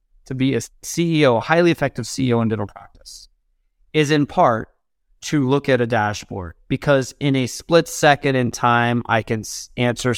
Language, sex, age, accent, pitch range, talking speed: English, male, 30-49, American, 115-160 Hz, 170 wpm